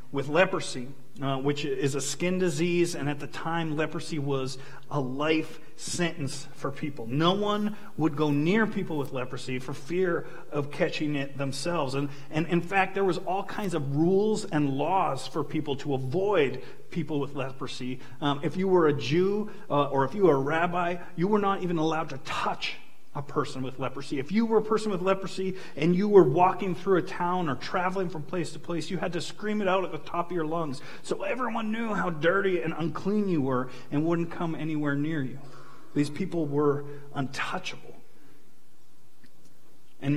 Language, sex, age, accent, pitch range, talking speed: English, male, 40-59, American, 140-180 Hz, 190 wpm